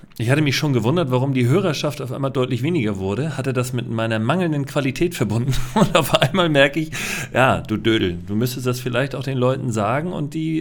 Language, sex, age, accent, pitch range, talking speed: German, male, 40-59, German, 120-155 Hz, 215 wpm